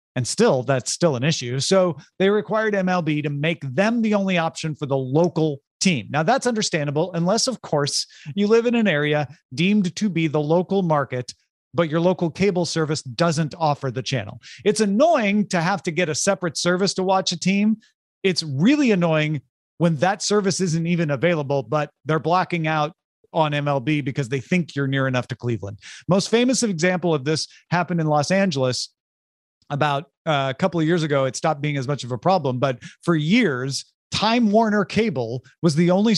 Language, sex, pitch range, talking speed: English, male, 145-195 Hz, 190 wpm